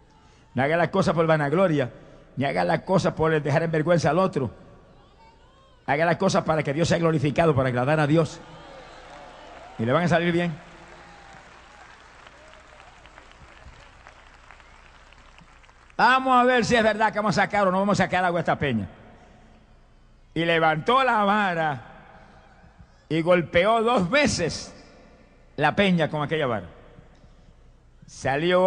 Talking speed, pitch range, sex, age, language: 140 wpm, 145-190 Hz, male, 60-79, Spanish